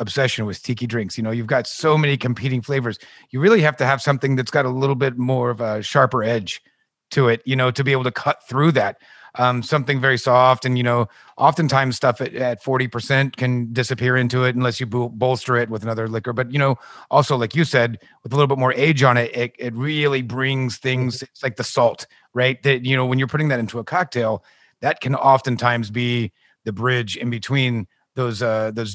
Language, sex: English, male